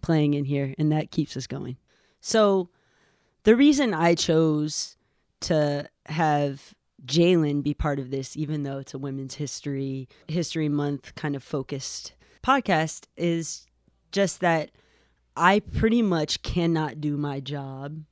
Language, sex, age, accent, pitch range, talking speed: English, female, 20-39, American, 145-170 Hz, 140 wpm